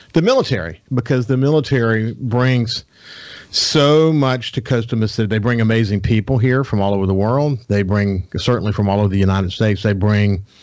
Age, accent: 50-69, American